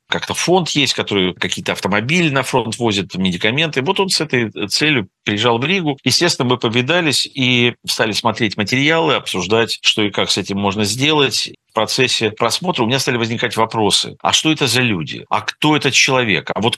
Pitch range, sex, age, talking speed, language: 100-135 Hz, male, 50-69, 185 wpm, Russian